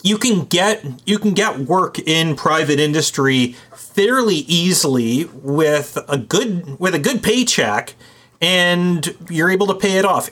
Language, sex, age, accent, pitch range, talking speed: English, male, 30-49, American, 135-185 Hz, 150 wpm